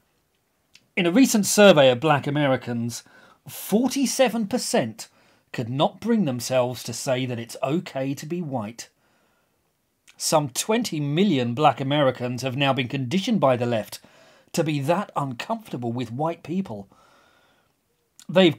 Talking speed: 130 wpm